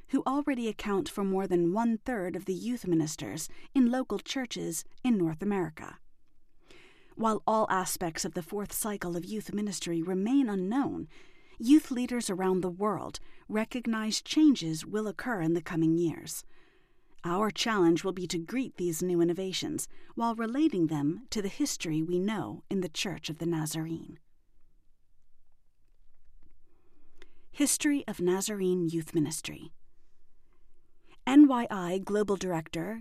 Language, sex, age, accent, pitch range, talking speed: English, female, 40-59, American, 175-255 Hz, 135 wpm